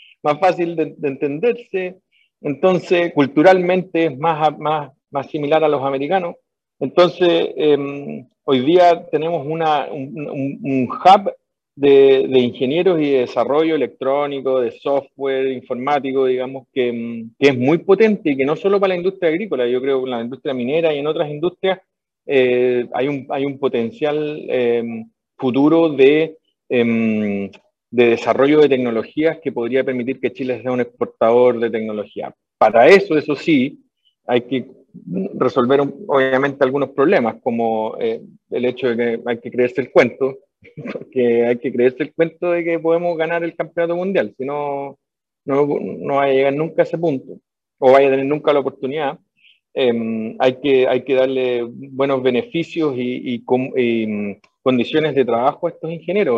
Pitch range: 125-160 Hz